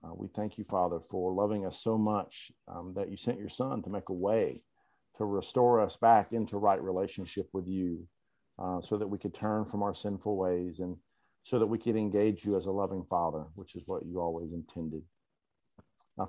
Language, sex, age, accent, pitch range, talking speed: English, male, 40-59, American, 95-110 Hz, 210 wpm